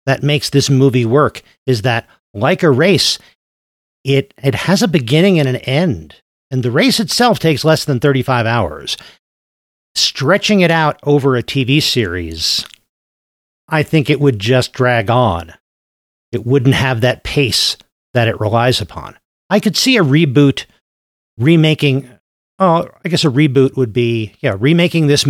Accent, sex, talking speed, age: American, male, 155 wpm, 50-69